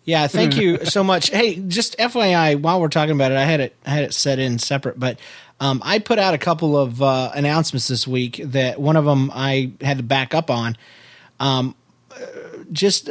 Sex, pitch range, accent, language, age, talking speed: male, 130-160 Hz, American, English, 30-49, 210 wpm